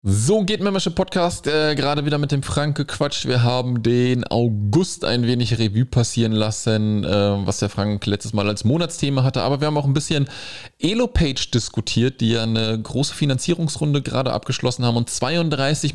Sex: male